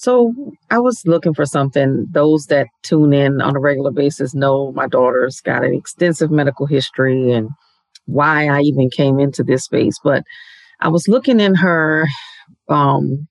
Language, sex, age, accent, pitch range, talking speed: English, female, 40-59, American, 145-195 Hz, 165 wpm